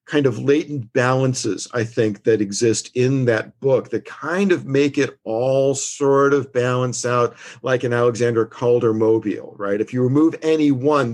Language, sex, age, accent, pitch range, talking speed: English, male, 50-69, American, 105-135 Hz, 170 wpm